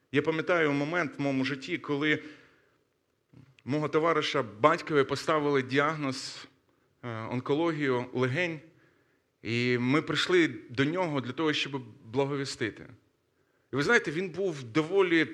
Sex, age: male, 30-49